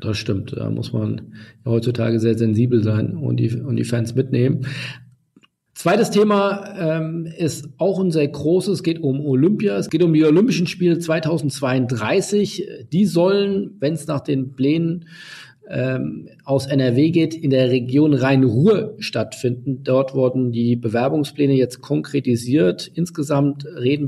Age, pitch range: 50-69, 130-160 Hz